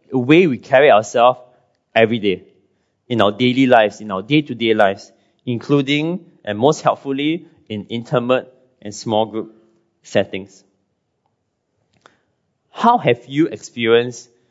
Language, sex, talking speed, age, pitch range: English, male, 120 wpm, 20-39, 105-140 Hz